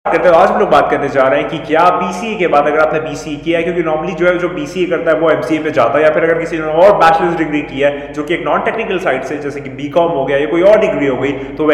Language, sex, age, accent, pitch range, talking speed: Hindi, male, 30-49, native, 145-180 Hz, 320 wpm